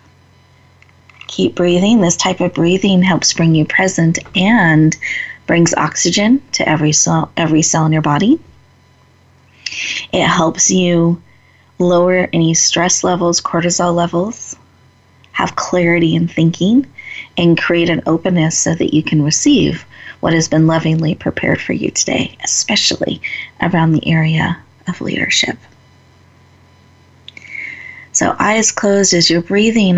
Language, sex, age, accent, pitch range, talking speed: English, female, 30-49, American, 155-200 Hz, 125 wpm